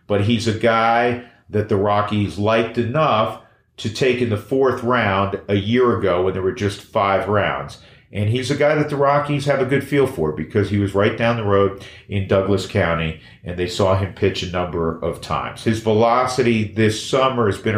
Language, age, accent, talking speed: English, 40-59, American, 205 wpm